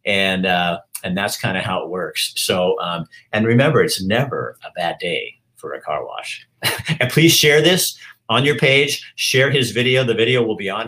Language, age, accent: English, 50-69, American